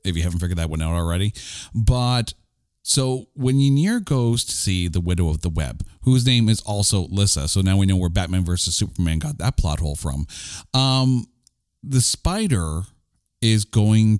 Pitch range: 90-115 Hz